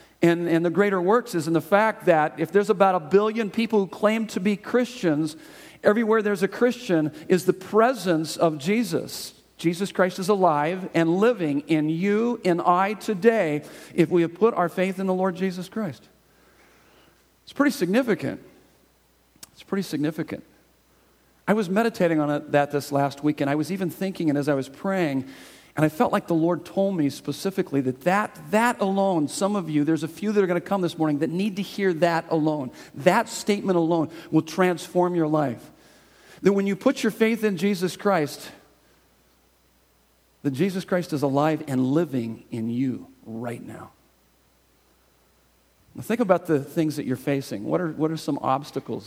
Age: 50-69